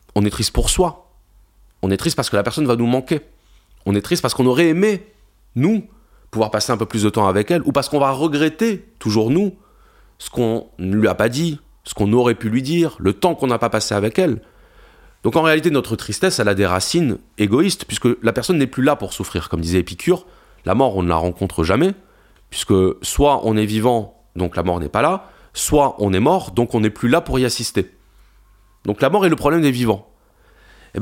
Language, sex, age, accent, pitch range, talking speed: French, male, 30-49, French, 100-150 Hz, 230 wpm